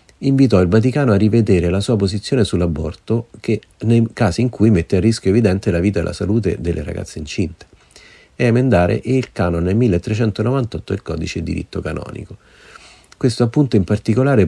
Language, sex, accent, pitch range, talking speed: Italian, male, native, 90-115 Hz, 165 wpm